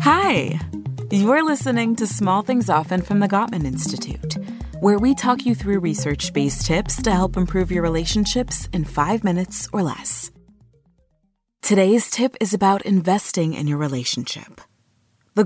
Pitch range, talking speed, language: 165-215 Hz, 145 wpm, English